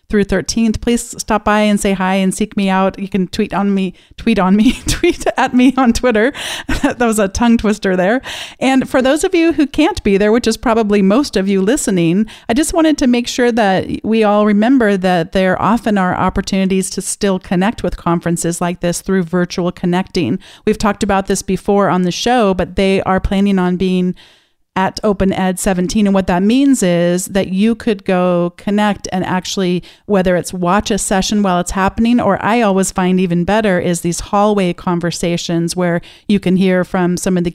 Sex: female